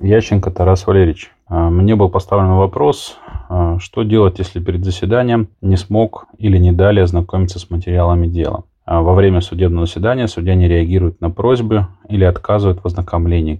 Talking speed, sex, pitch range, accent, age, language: 150 wpm, male, 85-100 Hz, native, 20-39, Russian